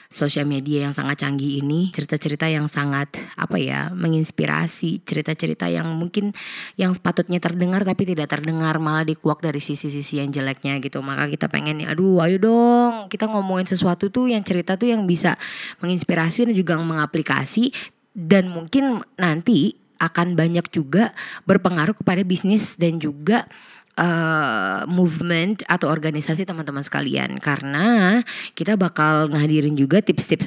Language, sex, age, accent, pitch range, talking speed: Indonesian, female, 20-39, native, 155-200 Hz, 140 wpm